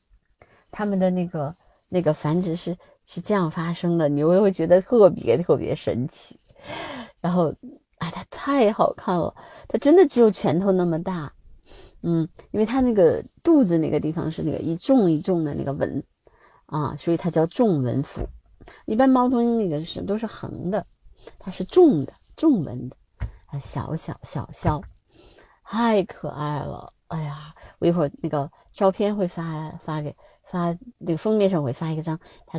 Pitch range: 145-205 Hz